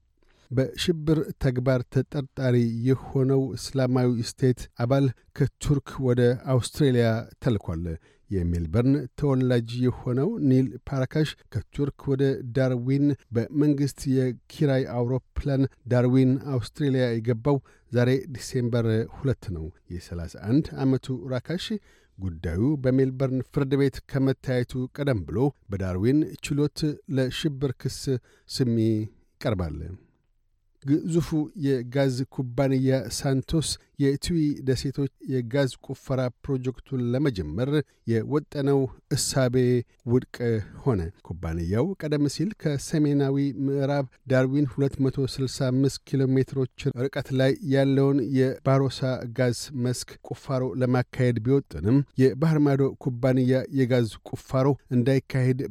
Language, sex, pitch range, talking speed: Amharic, male, 120-140 Hz, 85 wpm